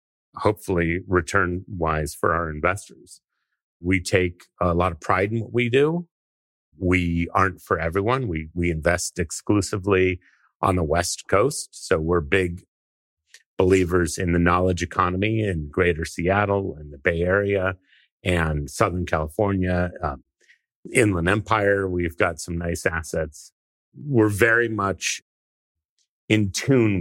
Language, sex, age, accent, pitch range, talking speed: English, male, 30-49, American, 85-100 Hz, 130 wpm